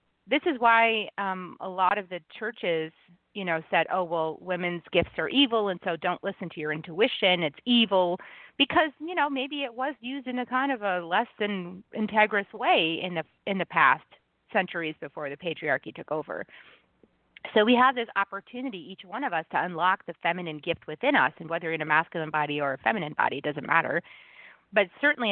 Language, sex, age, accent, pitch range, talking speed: English, female, 30-49, American, 165-220 Hz, 200 wpm